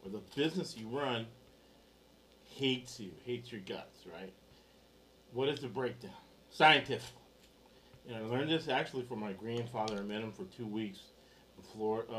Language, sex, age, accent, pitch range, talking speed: English, male, 40-59, American, 110-130 Hz, 160 wpm